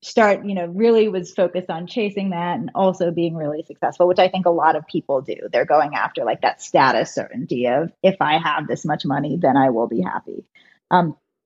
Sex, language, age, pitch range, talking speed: female, English, 20-39, 170-215 Hz, 220 wpm